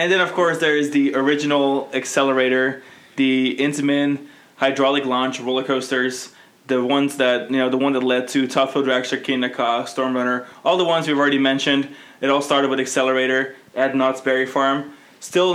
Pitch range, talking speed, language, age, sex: 130-145 Hz, 185 wpm, English, 20-39, male